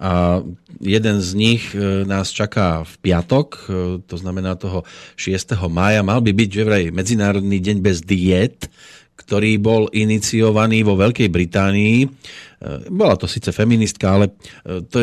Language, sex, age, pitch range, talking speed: Slovak, male, 30-49, 95-115 Hz, 130 wpm